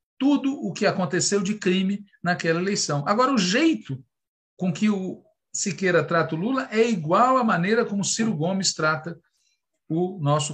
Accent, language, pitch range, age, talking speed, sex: Brazilian, Portuguese, 150-210 Hz, 50-69, 160 wpm, male